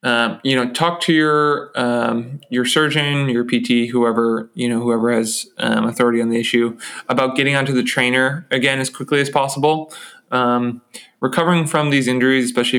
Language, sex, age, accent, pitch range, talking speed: English, male, 20-39, American, 115-130 Hz, 175 wpm